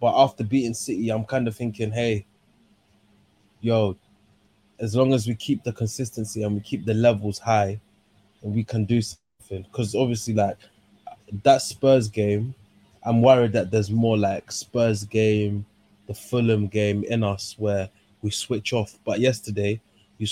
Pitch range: 105-120 Hz